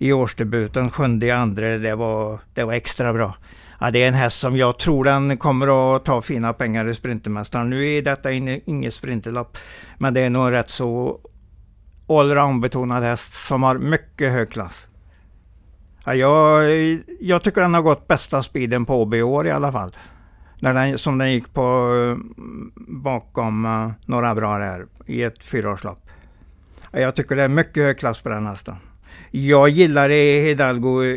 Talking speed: 175 wpm